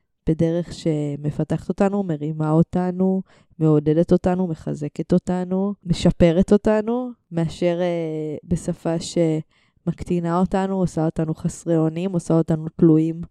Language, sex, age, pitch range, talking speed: Hebrew, female, 20-39, 160-185 Hz, 105 wpm